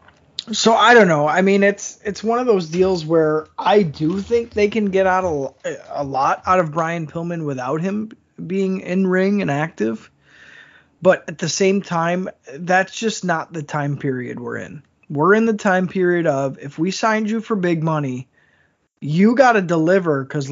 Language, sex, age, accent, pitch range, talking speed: English, male, 20-39, American, 140-195 Hz, 185 wpm